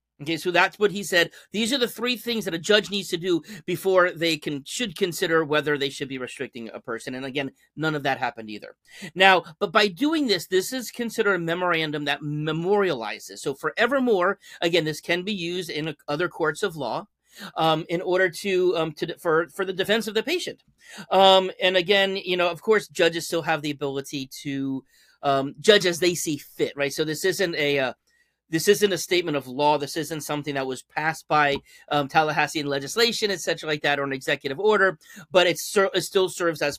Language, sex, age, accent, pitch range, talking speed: English, male, 40-59, American, 150-195 Hz, 210 wpm